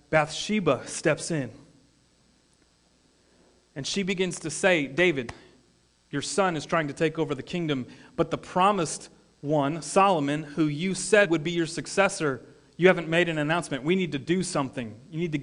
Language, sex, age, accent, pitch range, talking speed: English, male, 30-49, American, 130-175 Hz, 165 wpm